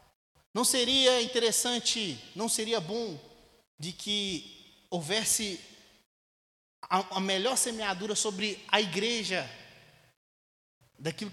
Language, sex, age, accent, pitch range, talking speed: Portuguese, male, 20-39, Brazilian, 145-215 Hz, 85 wpm